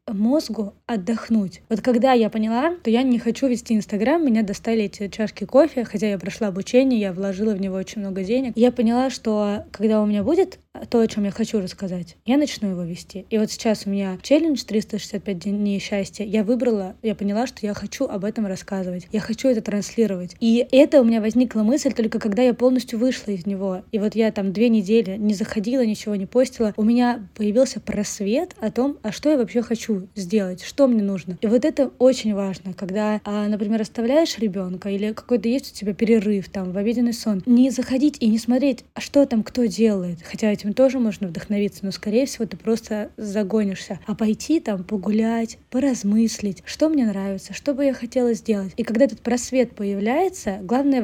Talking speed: 200 wpm